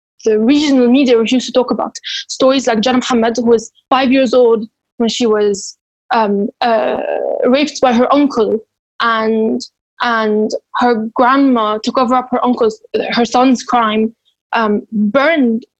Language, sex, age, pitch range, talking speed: English, female, 10-29, 230-275 Hz, 150 wpm